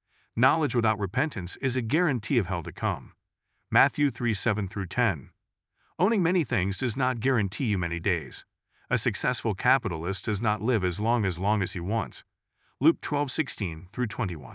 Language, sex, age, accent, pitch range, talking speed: English, male, 40-59, American, 95-120 Hz, 155 wpm